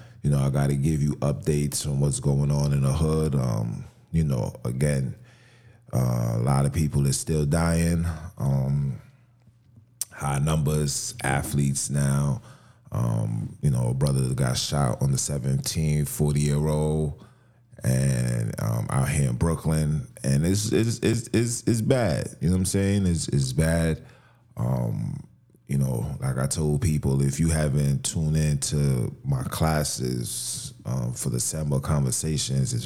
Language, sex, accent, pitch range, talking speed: English, male, American, 70-85 Hz, 155 wpm